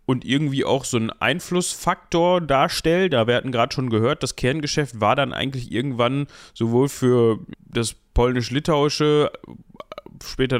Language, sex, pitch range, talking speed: German, male, 120-155 Hz, 135 wpm